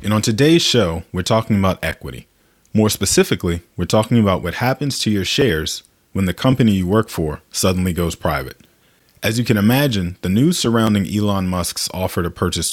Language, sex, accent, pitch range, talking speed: English, male, American, 90-115 Hz, 185 wpm